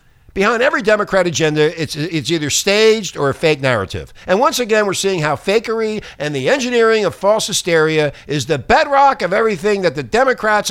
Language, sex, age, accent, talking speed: English, male, 50-69, American, 185 wpm